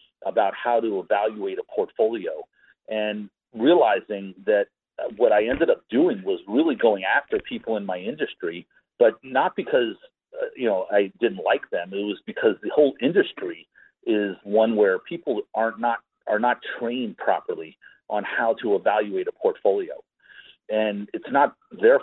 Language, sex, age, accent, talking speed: English, male, 40-59, American, 160 wpm